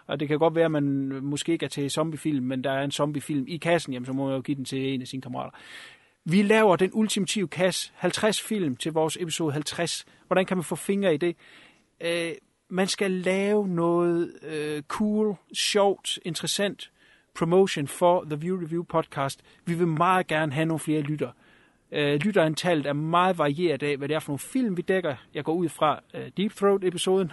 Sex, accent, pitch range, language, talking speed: male, native, 145-185 Hz, Danish, 195 wpm